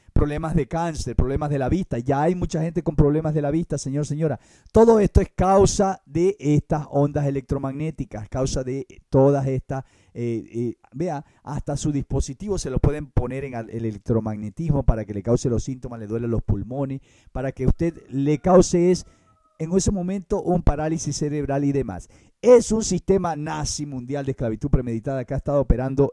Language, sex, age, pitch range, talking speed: English, male, 50-69, 130-165 Hz, 175 wpm